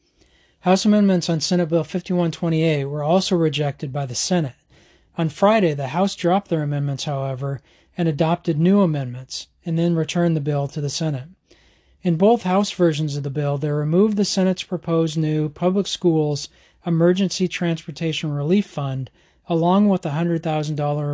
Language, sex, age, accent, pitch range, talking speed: English, male, 40-59, American, 145-175 Hz, 155 wpm